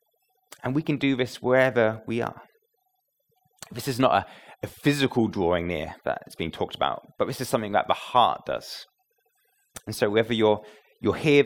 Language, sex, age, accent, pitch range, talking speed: English, male, 30-49, British, 110-155 Hz, 180 wpm